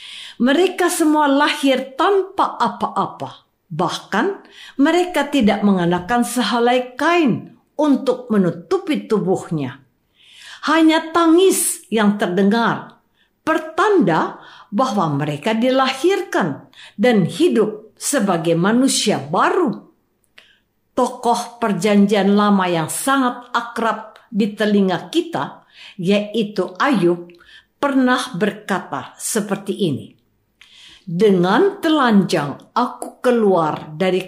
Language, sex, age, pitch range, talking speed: Indonesian, female, 50-69, 180-275 Hz, 80 wpm